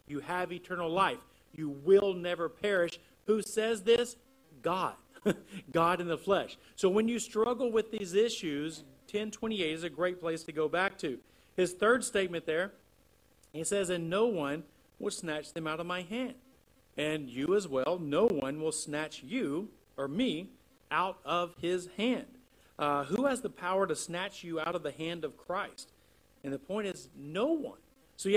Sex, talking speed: male, 180 wpm